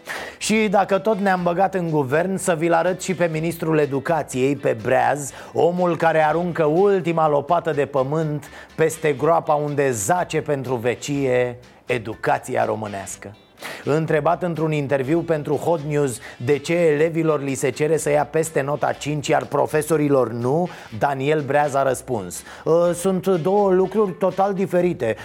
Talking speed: 145 wpm